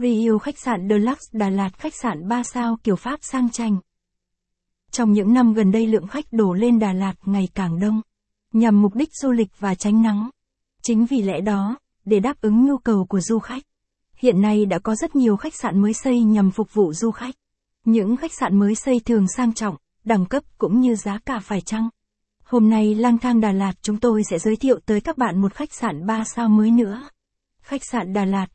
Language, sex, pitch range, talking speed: Vietnamese, female, 205-245 Hz, 220 wpm